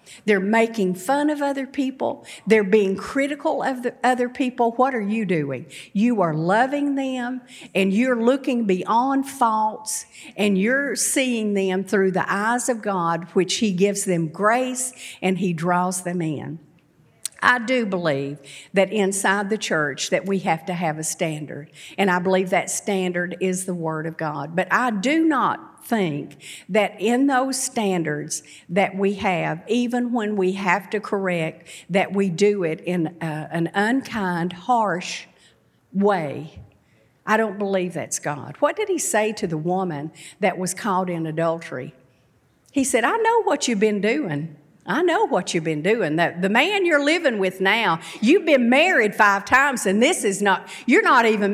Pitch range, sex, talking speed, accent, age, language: 170-245 Hz, female, 170 wpm, American, 50-69, English